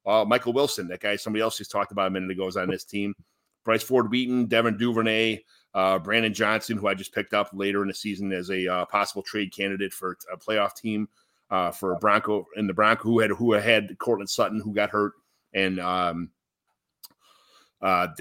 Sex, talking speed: male, 200 wpm